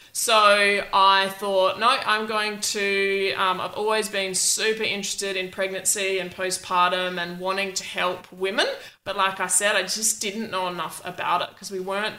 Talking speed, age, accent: 175 wpm, 20-39, Australian